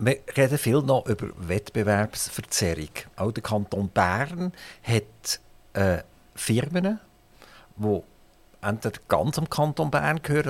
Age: 50-69